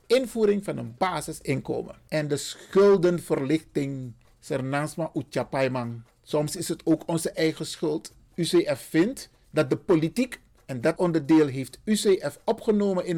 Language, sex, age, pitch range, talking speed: Dutch, male, 50-69, 155-230 Hz, 120 wpm